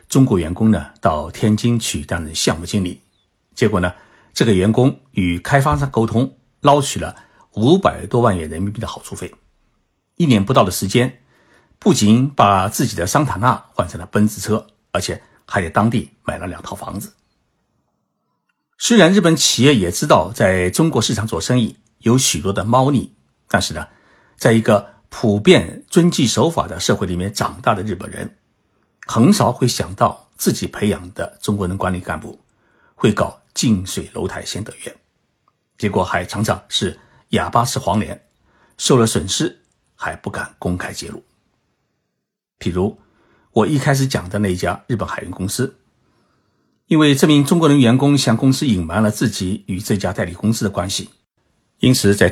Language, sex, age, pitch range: Chinese, male, 60-79, 95-130 Hz